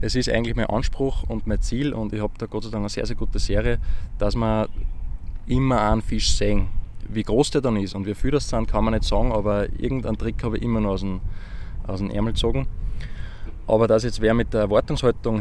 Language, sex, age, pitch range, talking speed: German, male, 20-39, 100-115 Hz, 225 wpm